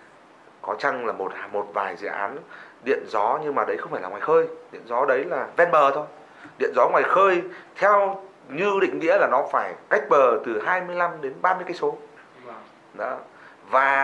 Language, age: Vietnamese, 30-49